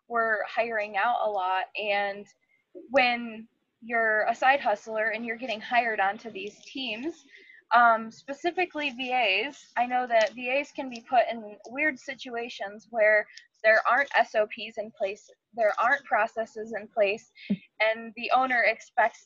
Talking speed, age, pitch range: 145 wpm, 10-29, 205-275 Hz